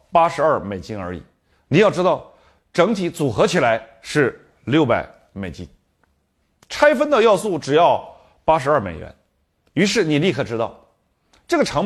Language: Chinese